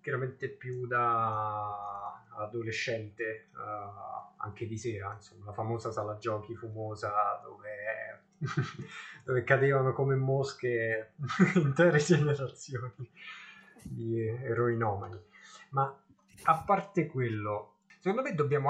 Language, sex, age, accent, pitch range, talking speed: Italian, male, 20-39, native, 110-140 Hz, 100 wpm